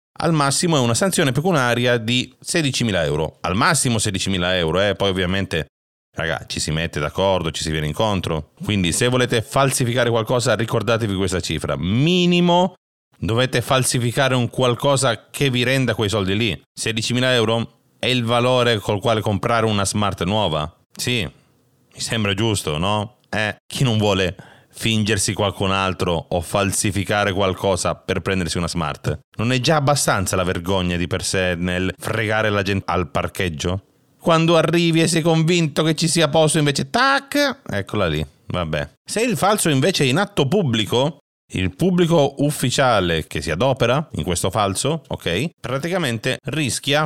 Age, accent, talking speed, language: 30-49, native, 155 wpm, Italian